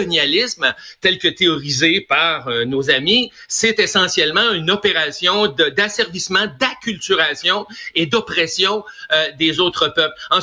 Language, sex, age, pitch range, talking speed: French, male, 60-79, 165-220 Hz, 125 wpm